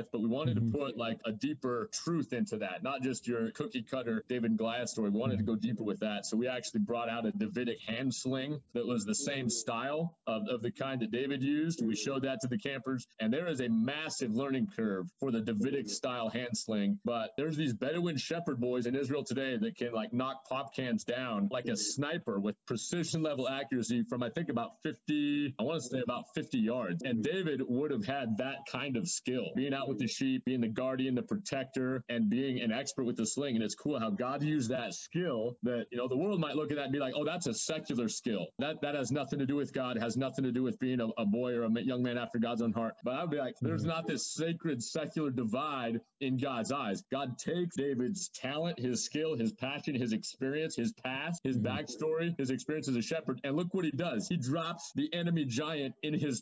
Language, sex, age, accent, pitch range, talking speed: English, male, 30-49, American, 120-155 Hz, 235 wpm